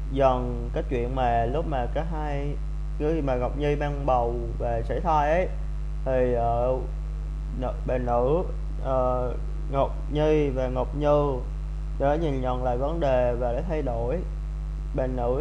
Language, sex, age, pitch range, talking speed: Vietnamese, male, 20-39, 120-155 Hz, 160 wpm